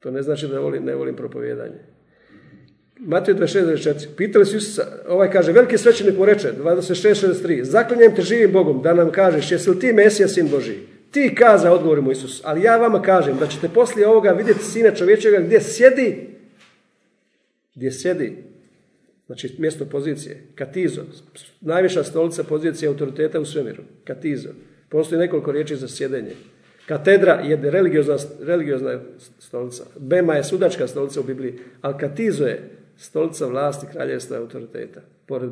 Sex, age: male, 50-69